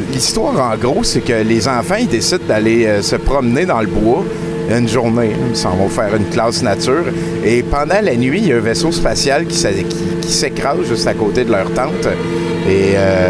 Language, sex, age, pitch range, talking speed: French, male, 60-79, 95-125 Hz, 210 wpm